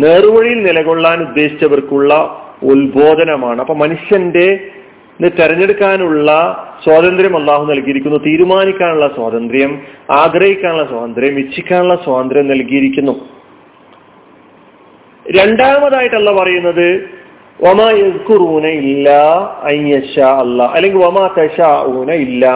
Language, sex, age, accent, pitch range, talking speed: Malayalam, male, 40-59, native, 145-205 Hz, 55 wpm